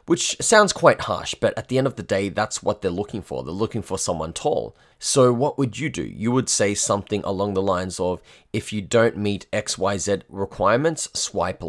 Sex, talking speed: male, 210 wpm